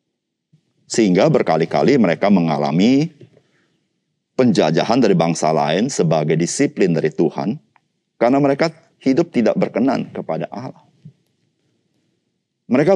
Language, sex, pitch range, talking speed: Indonesian, male, 100-160 Hz, 95 wpm